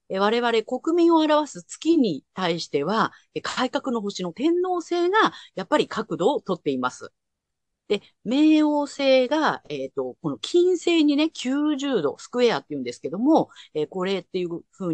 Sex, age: female, 40-59